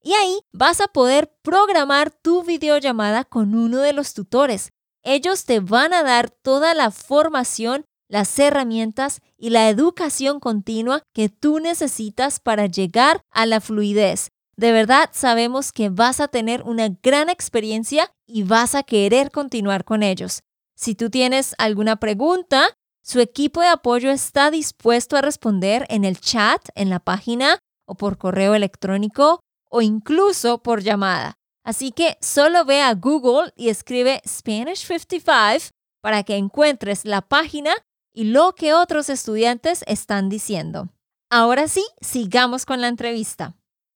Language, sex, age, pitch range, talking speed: Spanish, female, 20-39, 220-295 Hz, 145 wpm